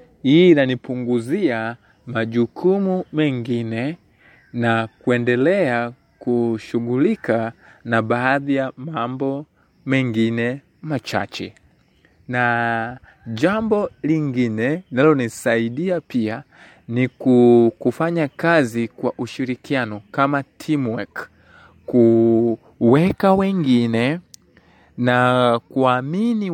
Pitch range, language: 115-150 Hz, Swahili